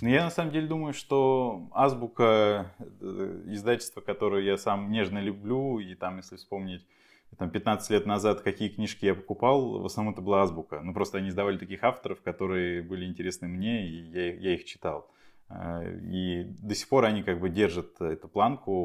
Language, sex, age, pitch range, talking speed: Russian, male, 20-39, 90-110 Hz, 180 wpm